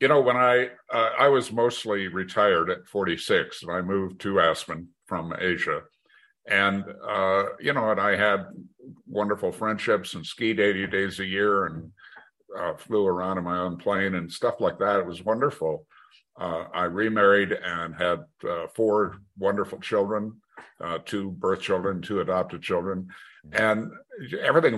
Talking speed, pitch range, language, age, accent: 160 wpm, 90-110 Hz, English, 60-79, American